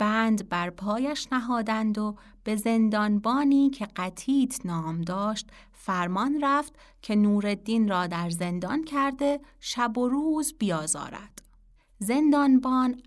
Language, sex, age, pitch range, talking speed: Persian, female, 30-49, 180-255 Hz, 110 wpm